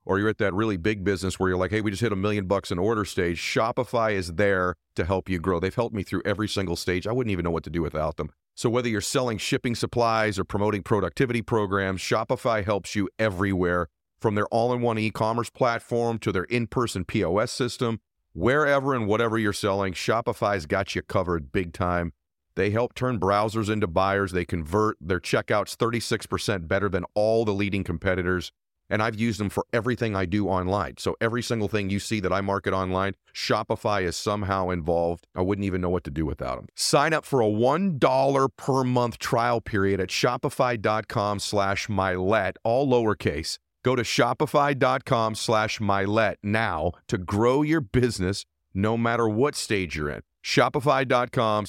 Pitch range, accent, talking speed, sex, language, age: 95-120 Hz, American, 185 wpm, male, English, 40-59